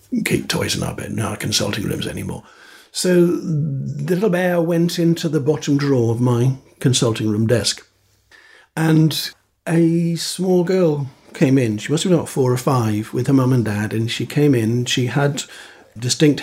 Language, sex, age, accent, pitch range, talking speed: English, male, 60-79, British, 115-150 Hz, 185 wpm